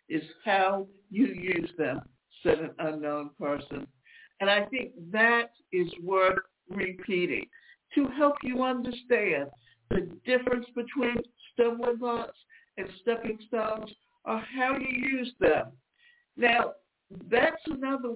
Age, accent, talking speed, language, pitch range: 60-79, American, 120 wpm, English, 195-265 Hz